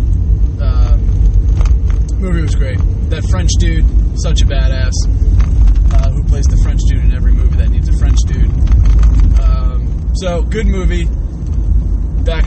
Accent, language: American, English